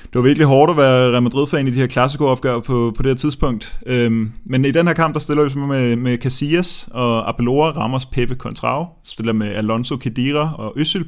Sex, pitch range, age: male, 115-130 Hz, 20-39